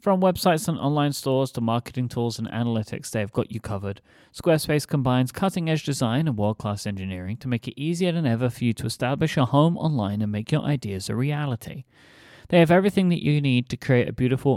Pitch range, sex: 110-145 Hz, male